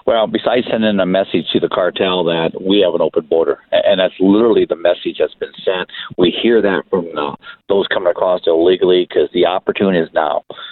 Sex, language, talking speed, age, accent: male, English, 195 wpm, 50-69, American